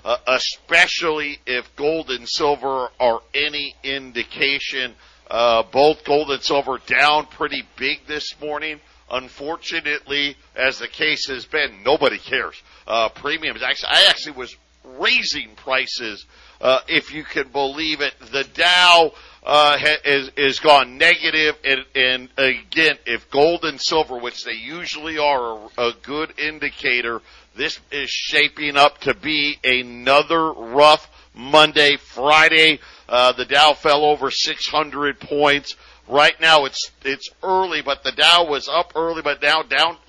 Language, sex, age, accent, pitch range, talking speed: English, male, 50-69, American, 135-155 Hz, 145 wpm